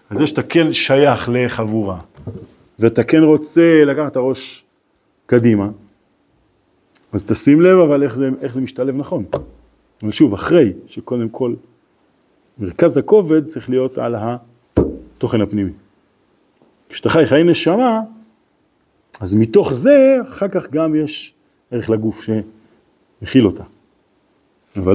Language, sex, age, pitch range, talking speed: Hebrew, male, 40-59, 110-155 Hz, 125 wpm